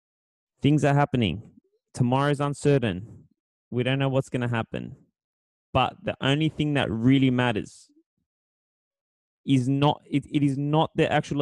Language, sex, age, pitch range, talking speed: English, male, 20-39, 120-140 Hz, 145 wpm